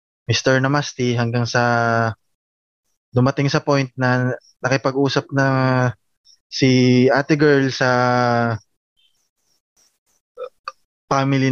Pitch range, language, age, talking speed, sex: 120-150 Hz, Filipino, 20-39, 80 wpm, male